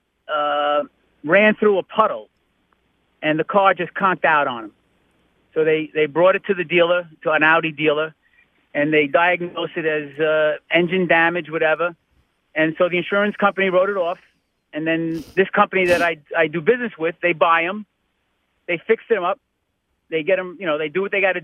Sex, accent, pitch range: male, American, 155-190 Hz